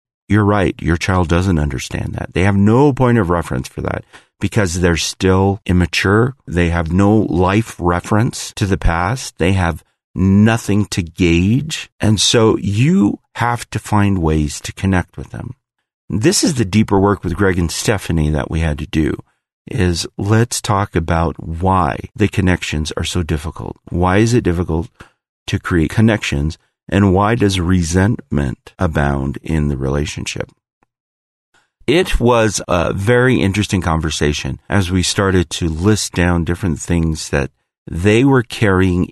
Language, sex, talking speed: English, male, 155 wpm